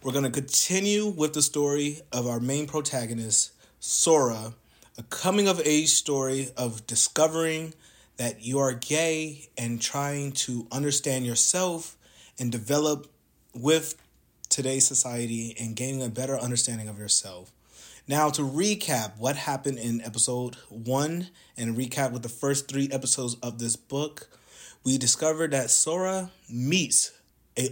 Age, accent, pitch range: 30-49, American, 120-155 Hz